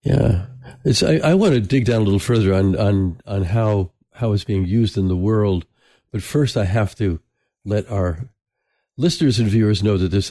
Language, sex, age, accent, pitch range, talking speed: English, male, 50-69, American, 95-125 Hz, 205 wpm